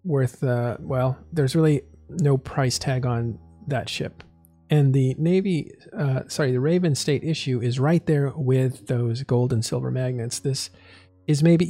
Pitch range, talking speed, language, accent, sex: 115-140 Hz, 165 wpm, English, American, male